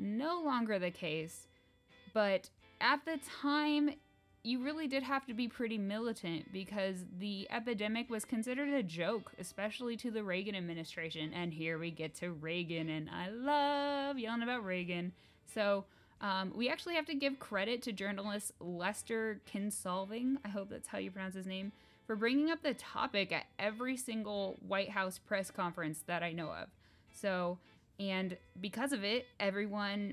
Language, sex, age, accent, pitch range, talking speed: English, female, 10-29, American, 180-235 Hz, 165 wpm